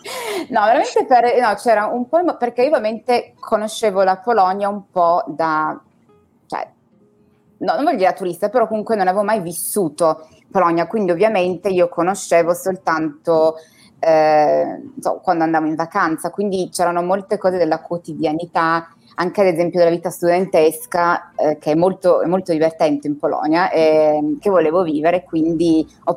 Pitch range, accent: 165-220 Hz, native